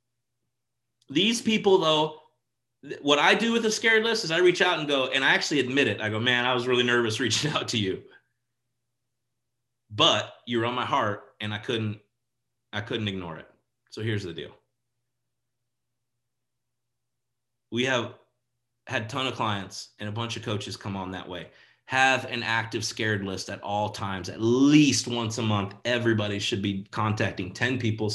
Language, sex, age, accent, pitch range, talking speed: English, male, 30-49, American, 110-145 Hz, 180 wpm